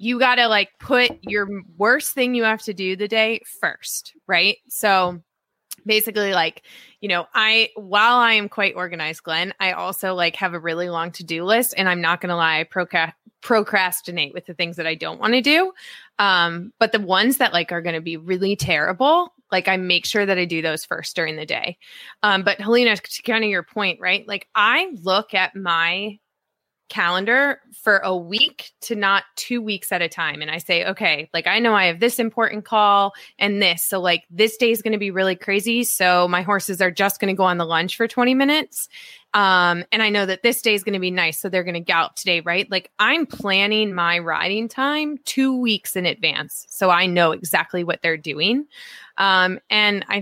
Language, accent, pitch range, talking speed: English, American, 175-225 Hz, 215 wpm